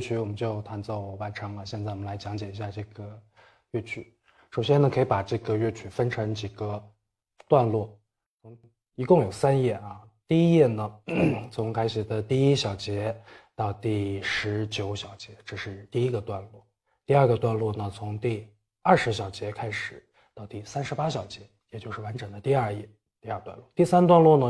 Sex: male